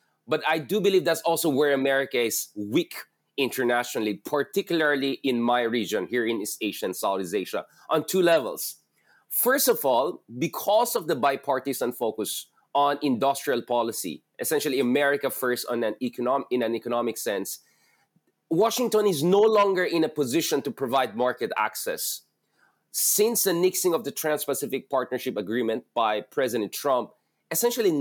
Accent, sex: Filipino, male